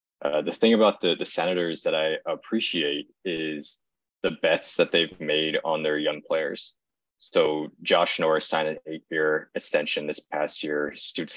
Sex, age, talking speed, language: male, 20-39, 165 wpm, English